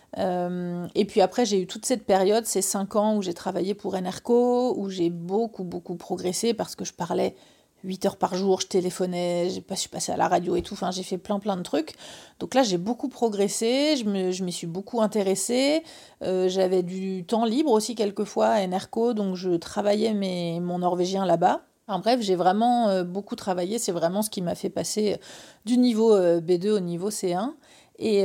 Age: 40-59